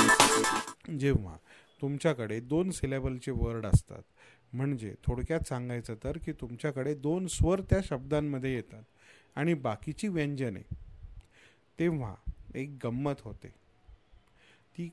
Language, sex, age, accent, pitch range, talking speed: English, male, 30-49, Indian, 115-155 Hz, 140 wpm